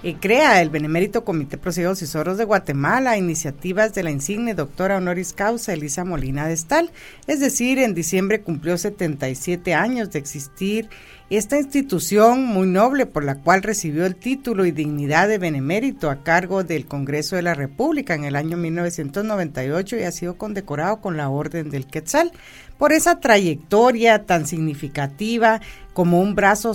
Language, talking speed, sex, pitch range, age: Spanish, 155 wpm, female, 155-225 Hz, 50-69